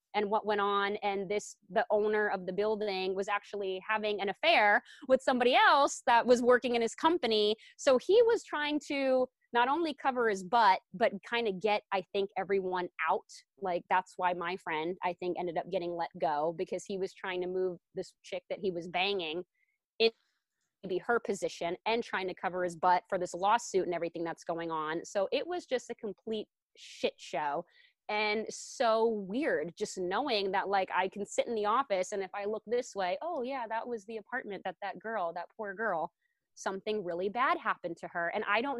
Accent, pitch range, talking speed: American, 185-235 Hz, 205 wpm